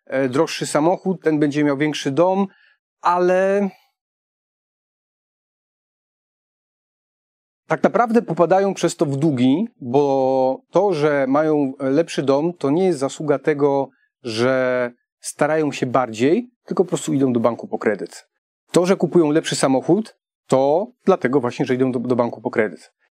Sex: male